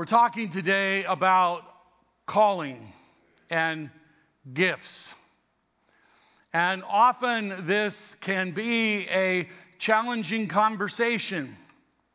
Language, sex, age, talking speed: English, male, 50-69, 75 wpm